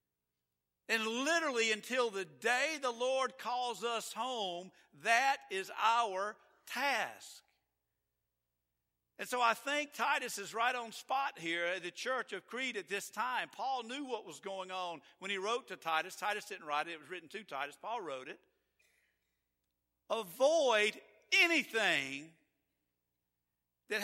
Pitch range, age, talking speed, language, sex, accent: 150-230 Hz, 50-69, 145 wpm, English, male, American